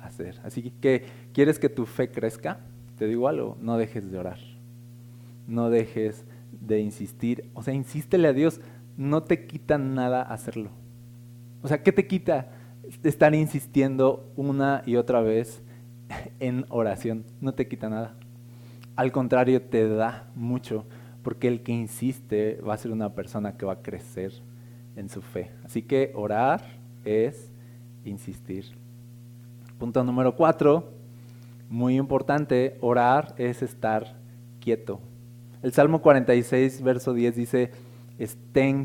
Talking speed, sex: 135 wpm, male